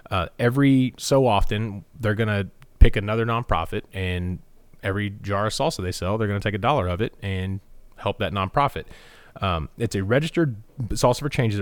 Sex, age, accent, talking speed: male, 30-49, American, 185 wpm